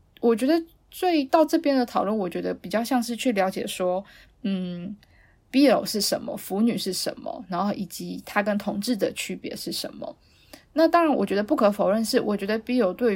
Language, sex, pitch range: Chinese, female, 195-250 Hz